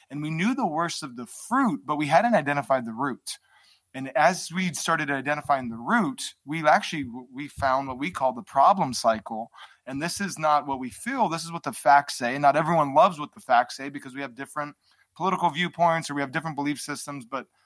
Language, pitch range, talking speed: English, 135-165 Hz, 220 wpm